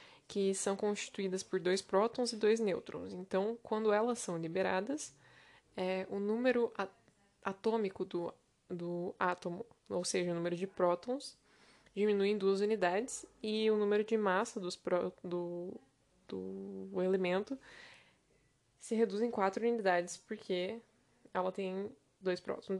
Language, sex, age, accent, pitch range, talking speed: Portuguese, female, 10-29, Brazilian, 185-225 Hz, 135 wpm